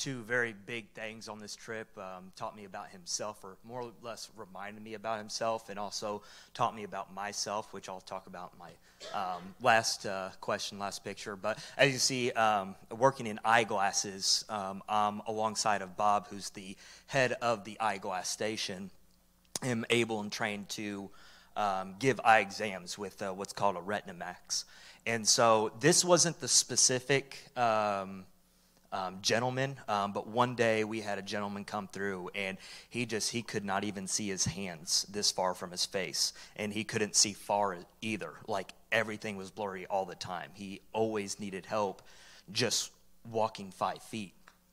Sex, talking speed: male, 170 wpm